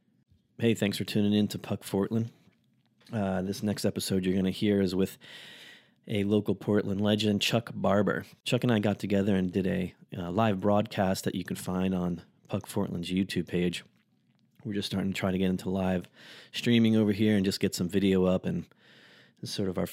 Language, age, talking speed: English, 30-49, 200 wpm